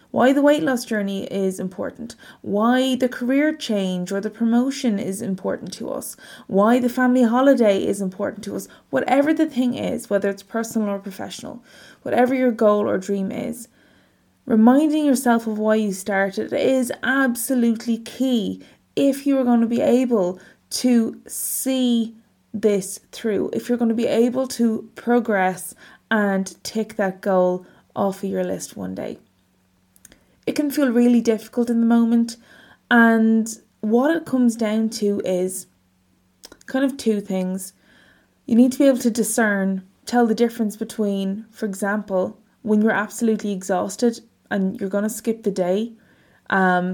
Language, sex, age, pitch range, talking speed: English, female, 20-39, 195-240 Hz, 155 wpm